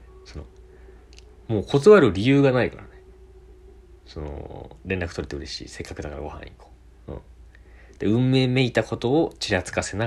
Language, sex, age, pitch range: Japanese, male, 40-59, 75-120 Hz